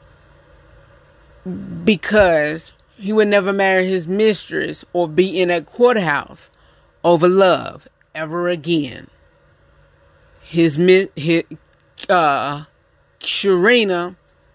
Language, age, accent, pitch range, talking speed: English, 30-49, American, 155-180 Hz, 80 wpm